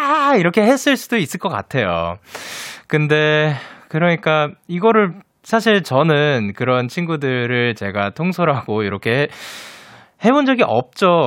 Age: 20-39